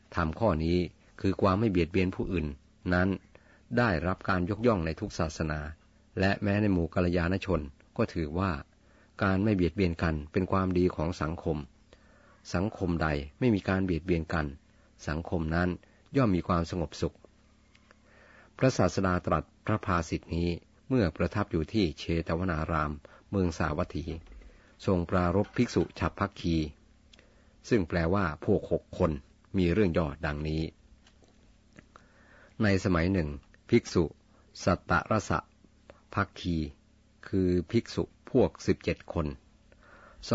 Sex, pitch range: male, 80-100 Hz